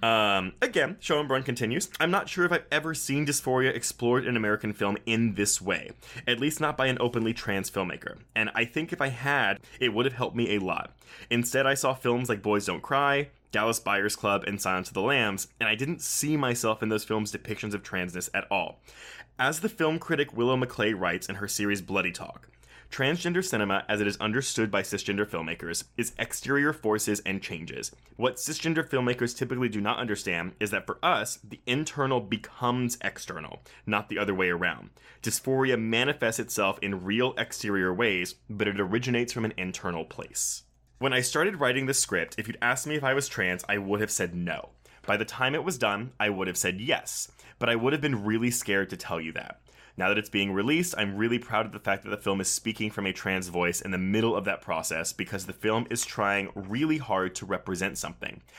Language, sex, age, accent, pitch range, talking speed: English, male, 20-39, American, 100-130 Hz, 210 wpm